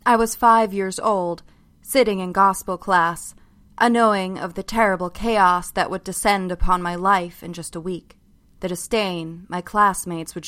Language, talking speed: English, 165 wpm